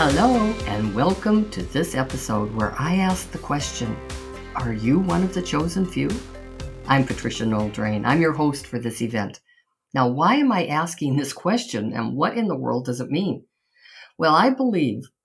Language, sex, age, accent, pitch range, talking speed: English, female, 50-69, American, 125-180 Hz, 175 wpm